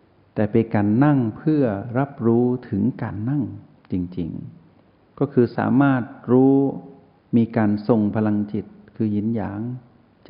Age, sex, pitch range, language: 60-79, male, 100-120 Hz, Thai